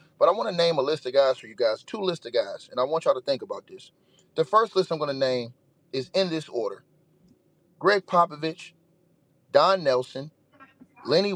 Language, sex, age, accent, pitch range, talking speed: English, male, 30-49, American, 135-190 Hz, 210 wpm